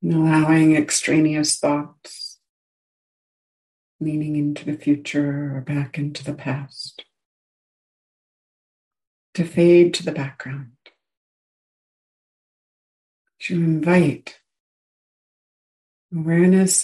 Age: 60-79